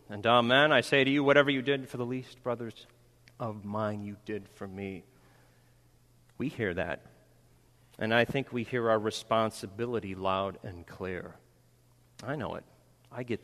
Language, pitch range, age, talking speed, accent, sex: English, 115-160 Hz, 40-59, 165 wpm, American, male